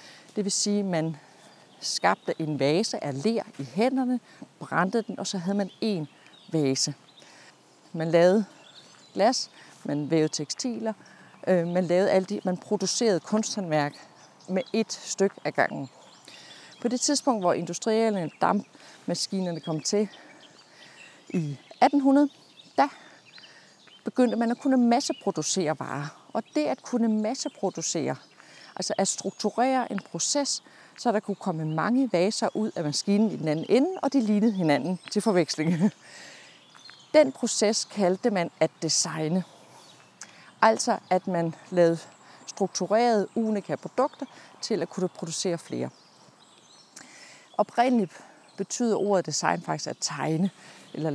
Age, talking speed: 30-49, 130 wpm